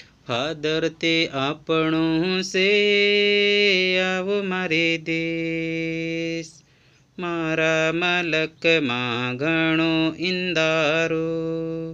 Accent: native